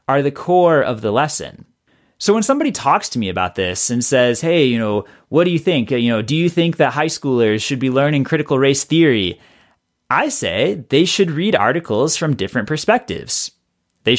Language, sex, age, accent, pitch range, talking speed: English, male, 30-49, American, 130-165 Hz, 200 wpm